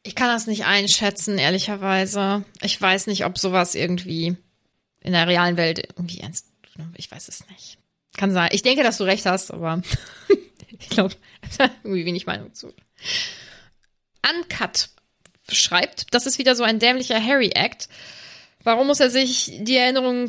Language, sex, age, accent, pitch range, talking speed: German, female, 20-39, German, 185-265 Hz, 155 wpm